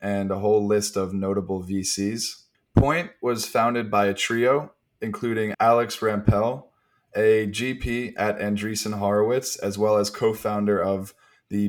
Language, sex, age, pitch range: English, male, 20-39, 100-115 Hz